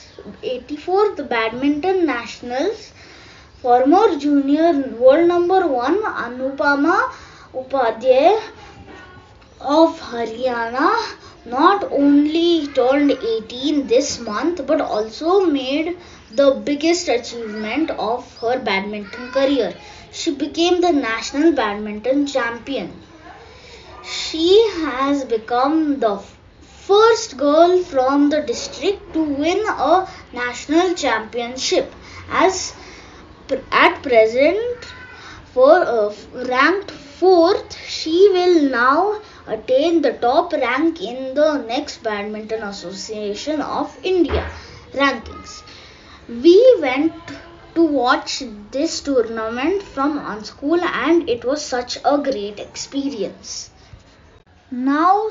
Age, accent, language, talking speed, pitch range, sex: 20-39, Indian, English, 95 wpm, 245-345 Hz, female